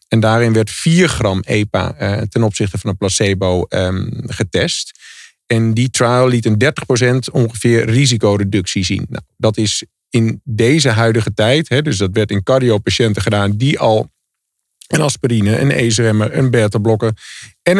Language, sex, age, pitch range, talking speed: Dutch, male, 50-69, 110-135 Hz, 155 wpm